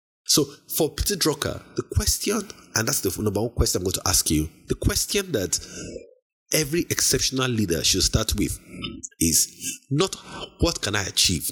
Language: English